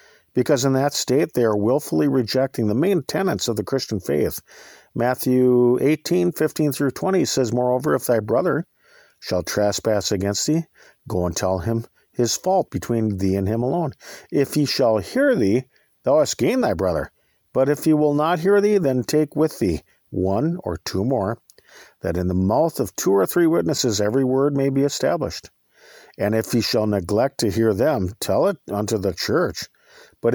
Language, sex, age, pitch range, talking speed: English, male, 50-69, 105-150 Hz, 185 wpm